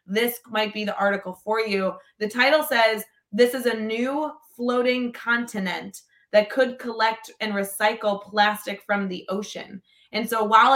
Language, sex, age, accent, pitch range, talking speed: English, female, 20-39, American, 200-235 Hz, 155 wpm